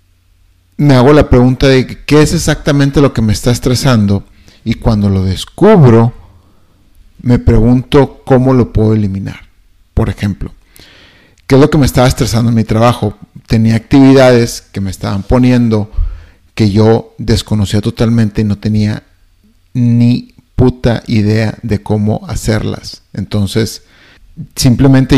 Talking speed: 135 wpm